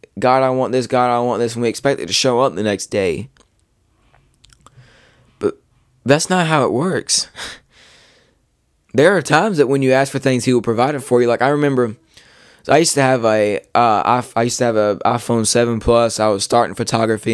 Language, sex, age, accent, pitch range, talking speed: English, male, 20-39, American, 105-120 Hz, 215 wpm